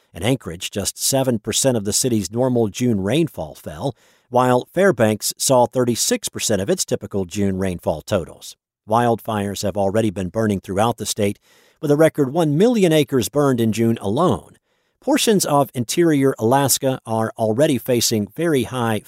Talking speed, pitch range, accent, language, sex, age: 150 wpm, 110-145 Hz, American, English, male, 50-69